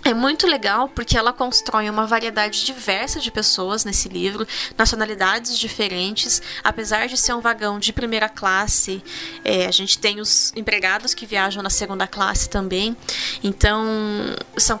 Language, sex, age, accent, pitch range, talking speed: Portuguese, female, 10-29, Brazilian, 210-265 Hz, 145 wpm